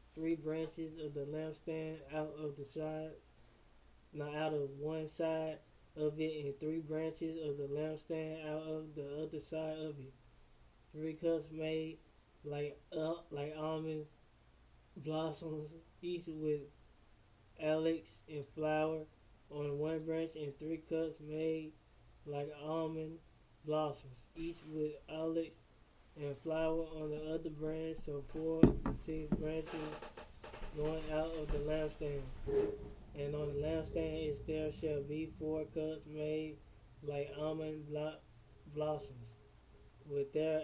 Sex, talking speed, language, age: male, 130 wpm, English, 20-39